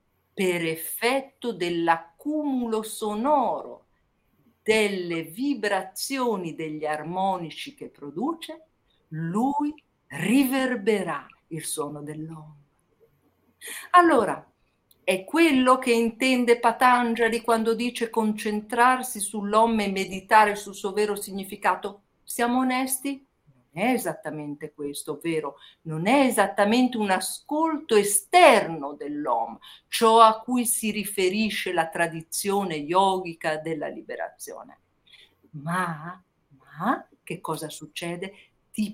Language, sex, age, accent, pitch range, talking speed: Italian, female, 50-69, native, 180-250 Hz, 90 wpm